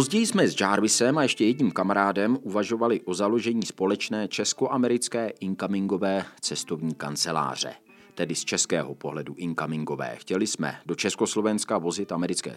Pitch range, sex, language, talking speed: 90-130 Hz, male, Czech, 130 wpm